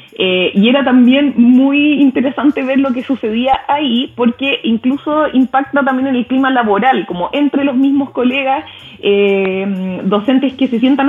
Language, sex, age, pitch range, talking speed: Spanish, female, 20-39, 215-275 Hz, 155 wpm